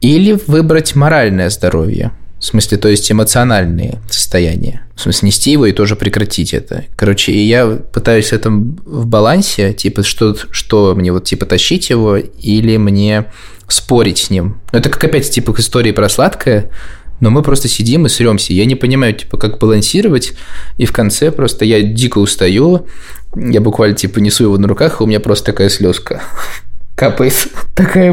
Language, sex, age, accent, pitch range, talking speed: Russian, male, 20-39, native, 100-120 Hz, 170 wpm